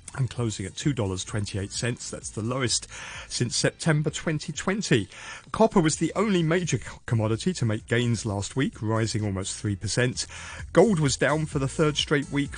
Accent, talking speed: British, 155 wpm